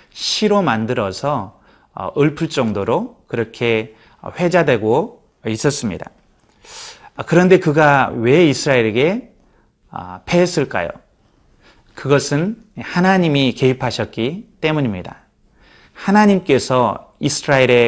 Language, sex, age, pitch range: Korean, male, 30-49, 120-170 Hz